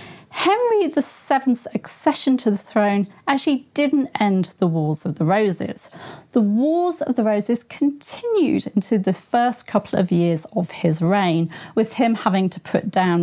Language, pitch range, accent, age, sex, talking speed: English, 175-245 Hz, British, 40-59, female, 160 wpm